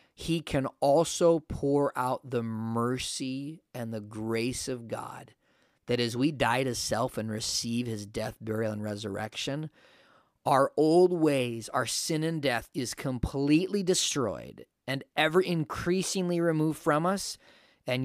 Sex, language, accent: male, English, American